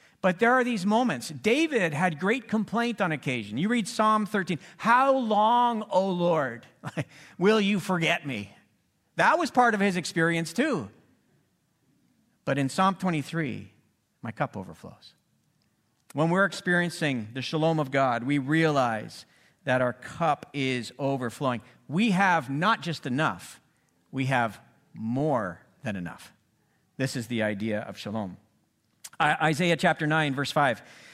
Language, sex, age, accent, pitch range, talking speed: English, male, 50-69, American, 130-180 Hz, 140 wpm